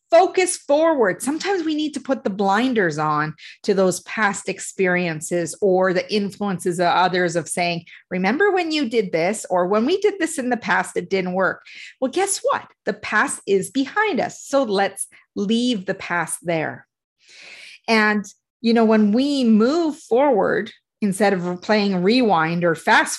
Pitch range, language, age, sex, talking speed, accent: 185-255 Hz, English, 40-59, female, 165 wpm, American